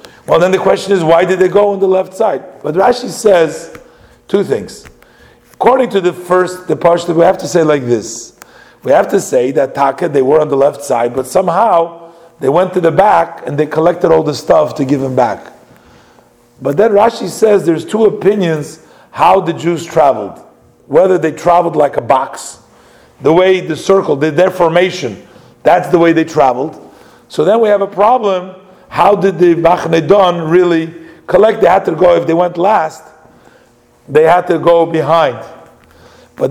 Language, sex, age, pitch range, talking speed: English, male, 50-69, 160-190 Hz, 185 wpm